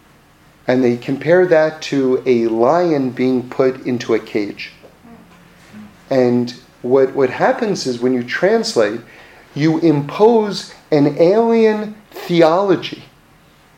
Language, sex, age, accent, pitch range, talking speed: English, male, 40-59, American, 135-205 Hz, 110 wpm